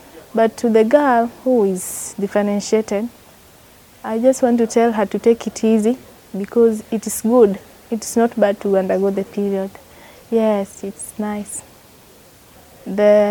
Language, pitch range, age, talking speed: English, 200-235 Hz, 20-39, 145 wpm